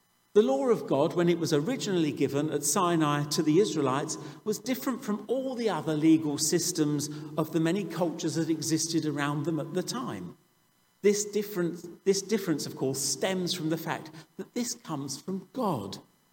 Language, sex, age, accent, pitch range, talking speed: English, male, 50-69, British, 145-180 Hz, 175 wpm